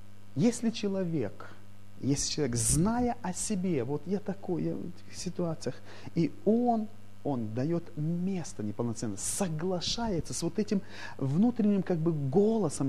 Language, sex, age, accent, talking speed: Russian, male, 30-49, native, 130 wpm